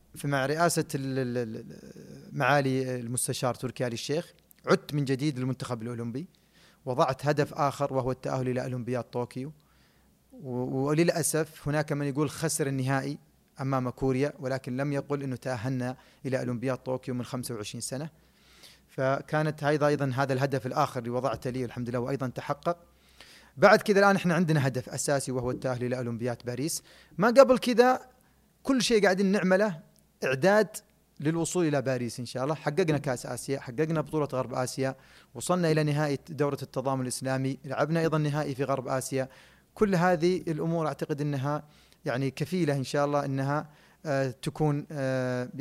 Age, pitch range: 30-49, 130-155 Hz